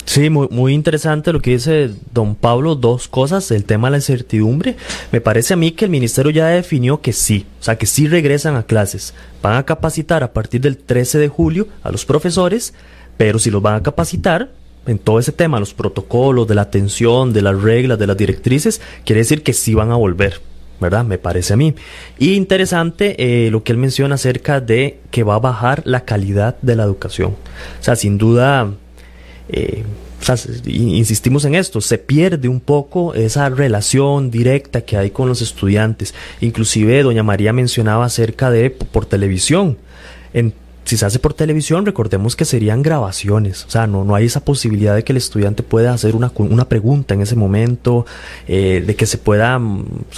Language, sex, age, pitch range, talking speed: Spanish, male, 30-49, 105-140 Hz, 195 wpm